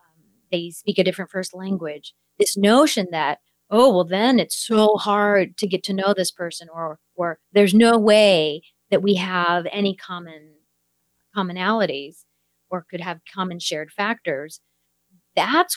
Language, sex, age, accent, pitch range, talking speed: English, female, 40-59, American, 170-220 Hz, 150 wpm